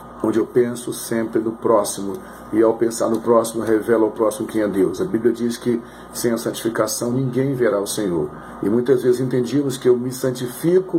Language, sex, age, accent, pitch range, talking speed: English, male, 40-59, Brazilian, 110-125 Hz, 195 wpm